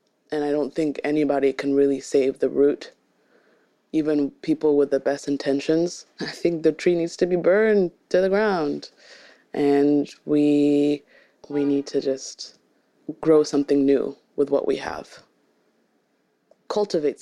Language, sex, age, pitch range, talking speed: English, female, 20-39, 145-170 Hz, 145 wpm